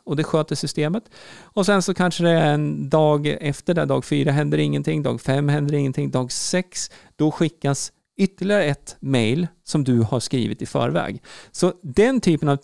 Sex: male